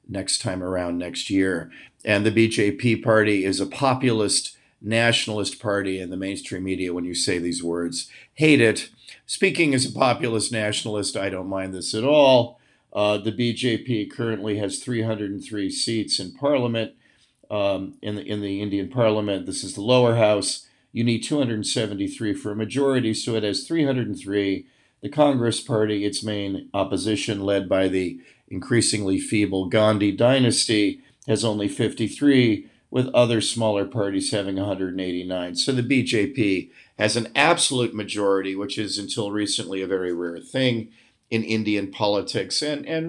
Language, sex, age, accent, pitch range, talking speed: English, male, 50-69, American, 100-120 Hz, 150 wpm